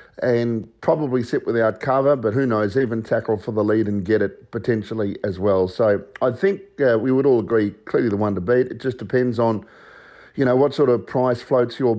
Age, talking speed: 50-69, 220 wpm